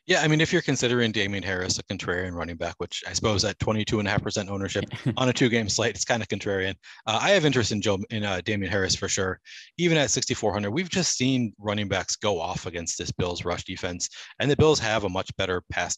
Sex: male